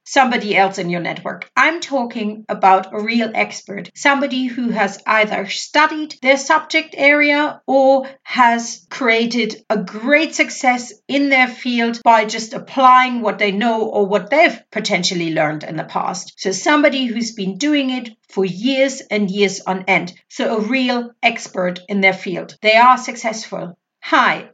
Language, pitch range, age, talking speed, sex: English, 205-275 Hz, 50-69, 160 wpm, female